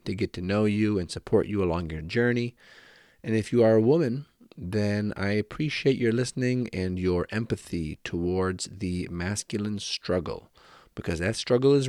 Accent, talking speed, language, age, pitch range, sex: American, 165 wpm, English, 40-59, 90-110 Hz, male